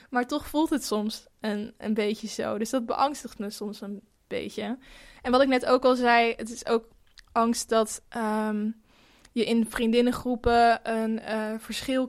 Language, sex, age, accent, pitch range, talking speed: Dutch, female, 10-29, Dutch, 225-250 Hz, 175 wpm